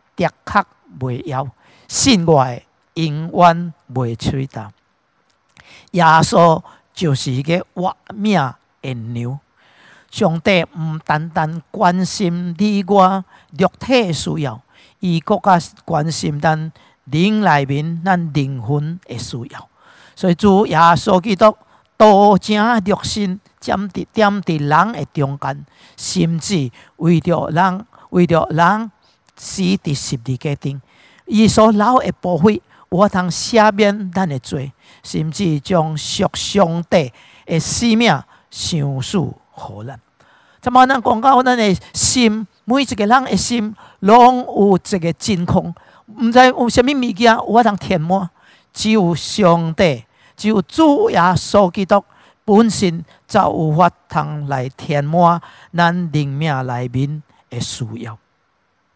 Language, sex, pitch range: English, male, 150-205 Hz